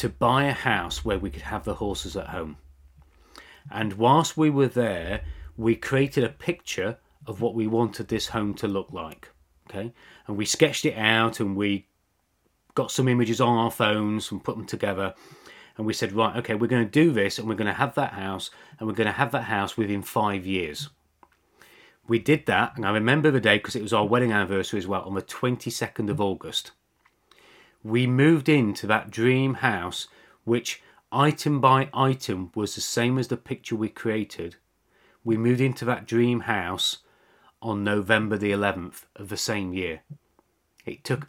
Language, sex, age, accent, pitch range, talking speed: English, male, 30-49, British, 105-130 Hz, 190 wpm